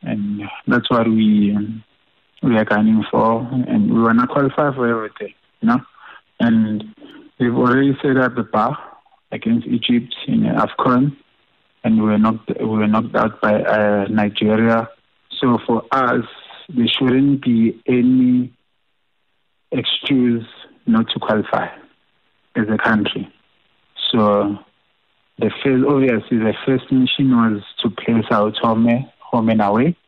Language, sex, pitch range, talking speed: English, male, 110-130 Hz, 135 wpm